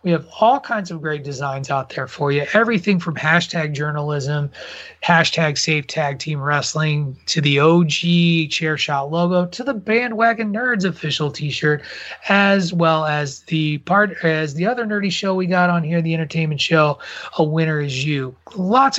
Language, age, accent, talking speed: English, 30-49, American, 175 wpm